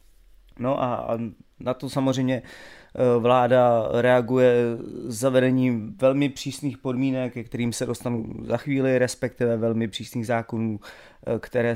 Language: Czech